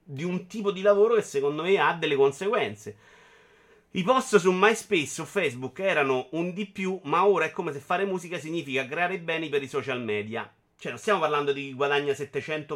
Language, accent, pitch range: Italian, native, 145-205 Hz